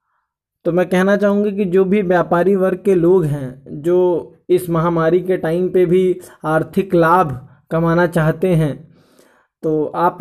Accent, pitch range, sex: native, 170-200 Hz, male